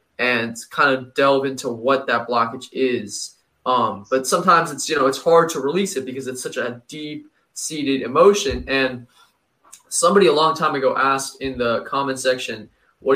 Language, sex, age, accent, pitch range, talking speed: English, male, 20-39, American, 125-150 Hz, 175 wpm